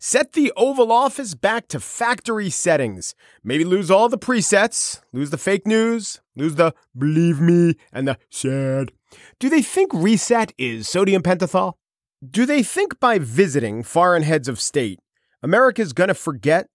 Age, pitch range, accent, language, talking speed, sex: 30-49, 165-245 Hz, American, English, 160 wpm, male